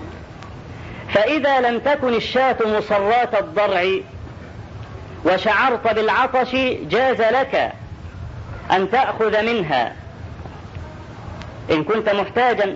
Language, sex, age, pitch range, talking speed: Arabic, female, 40-59, 180-245 Hz, 75 wpm